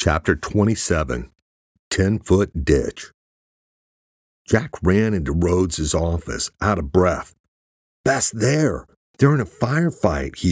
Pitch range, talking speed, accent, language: 75-105 Hz, 110 wpm, American, English